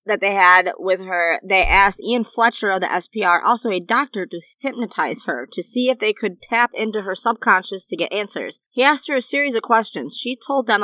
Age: 30-49